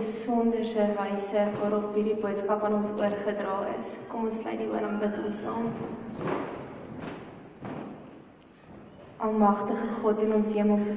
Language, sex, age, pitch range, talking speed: English, female, 20-39, 210-230 Hz, 125 wpm